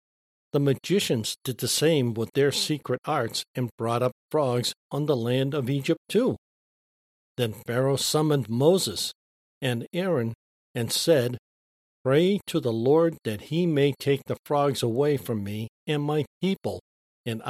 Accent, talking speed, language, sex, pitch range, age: American, 150 wpm, English, male, 110-150 Hz, 50-69